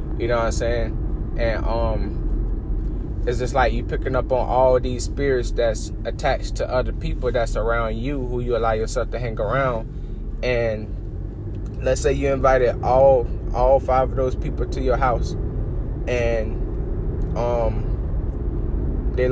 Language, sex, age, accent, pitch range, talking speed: English, male, 10-29, American, 100-125 Hz, 150 wpm